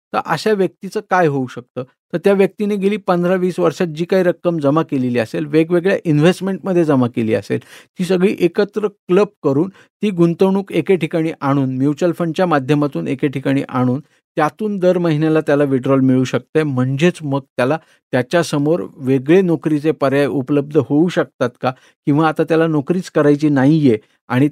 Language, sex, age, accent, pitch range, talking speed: Marathi, male, 50-69, native, 140-175 Hz, 155 wpm